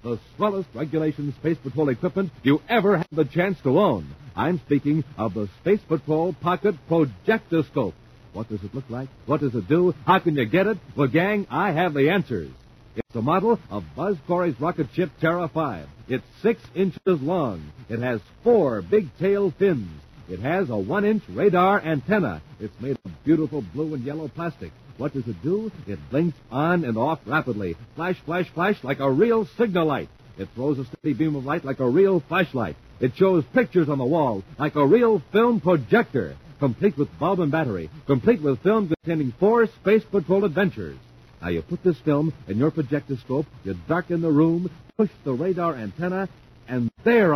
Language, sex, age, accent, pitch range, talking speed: English, male, 60-79, American, 135-190 Hz, 185 wpm